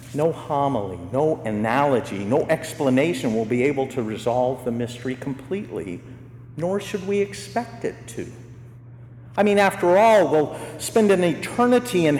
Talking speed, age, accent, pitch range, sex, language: 145 wpm, 50-69, American, 120-155 Hz, male, English